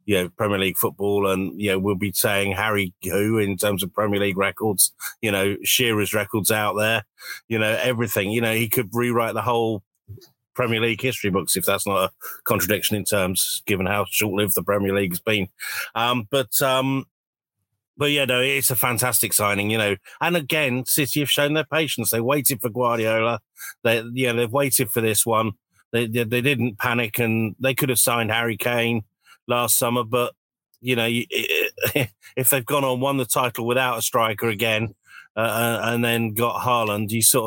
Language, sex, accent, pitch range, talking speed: English, male, British, 105-135 Hz, 195 wpm